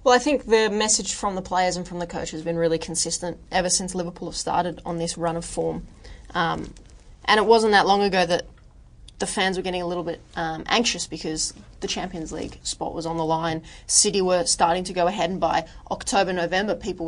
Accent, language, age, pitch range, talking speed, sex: Australian, English, 20-39, 170-200 Hz, 220 wpm, female